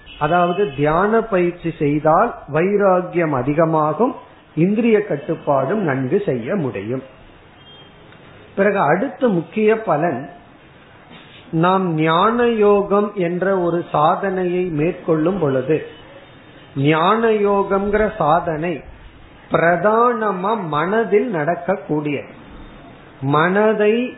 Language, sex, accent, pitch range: Tamil, male, native, 150-200 Hz